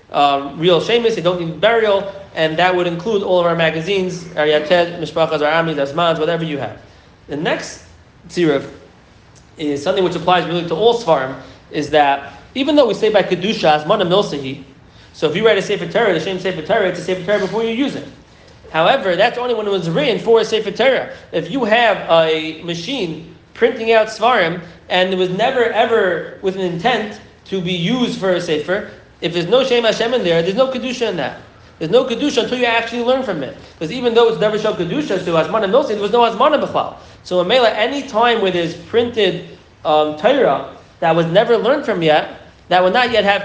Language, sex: English, male